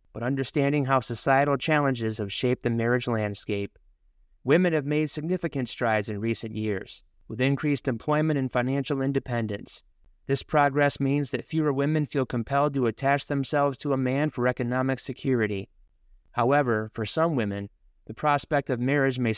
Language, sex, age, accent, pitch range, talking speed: English, male, 30-49, American, 115-140 Hz, 155 wpm